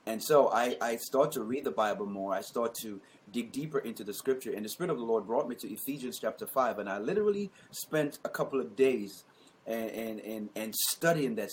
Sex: male